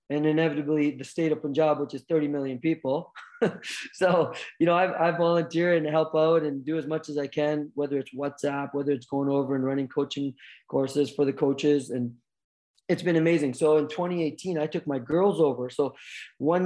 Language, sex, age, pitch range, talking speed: English, male, 20-39, 140-160 Hz, 200 wpm